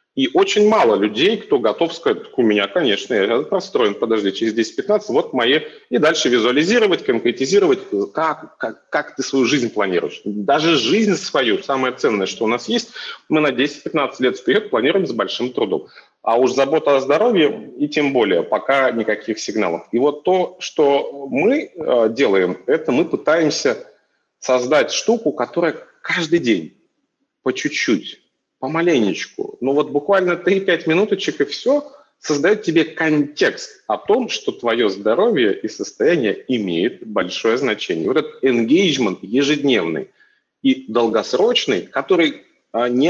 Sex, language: male, Russian